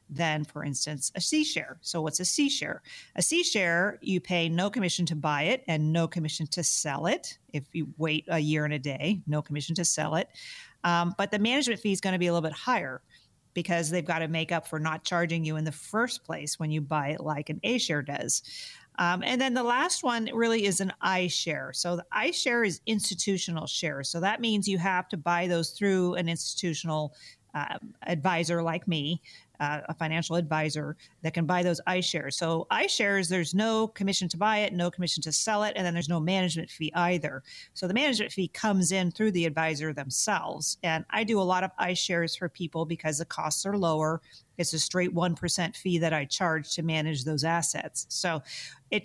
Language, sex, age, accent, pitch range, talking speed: English, female, 40-59, American, 160-200 Hz, 205 wpm